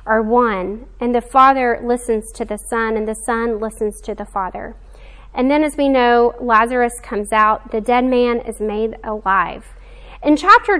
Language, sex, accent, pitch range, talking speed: English, female, American, 230-300 Hz, 180 wpm